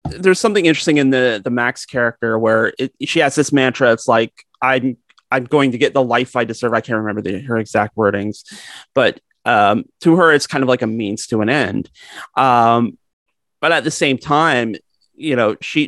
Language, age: English, 30-49